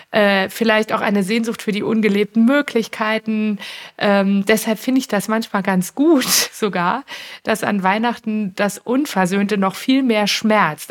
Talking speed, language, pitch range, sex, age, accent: 145 wpm, German, 195-235 Hz, female, 50-69, German